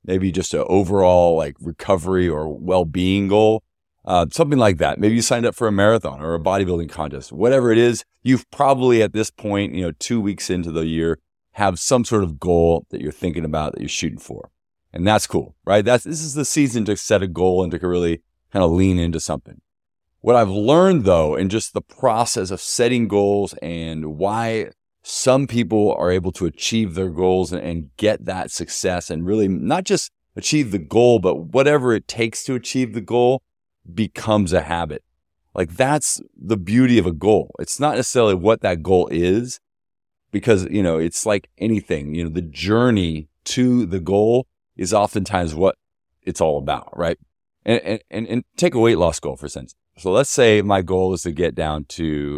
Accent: American